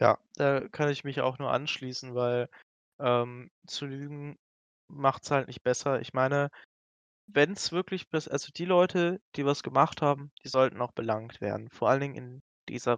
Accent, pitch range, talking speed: German, 120-145 Hz, 190 wpm